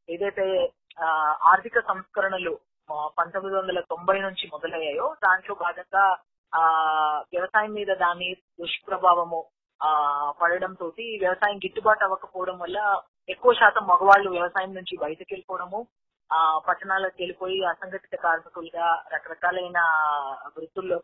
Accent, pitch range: native, 175-215 Hz